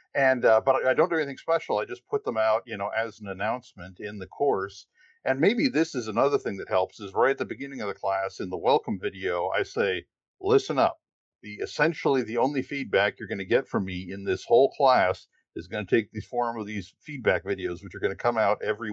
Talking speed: 245 wpm